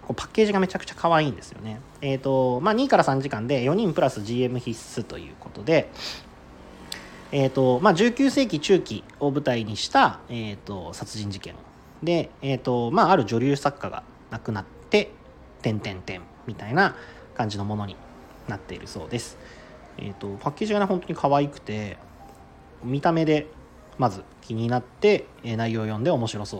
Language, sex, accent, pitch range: Japanese, male, native, 105-165 Hz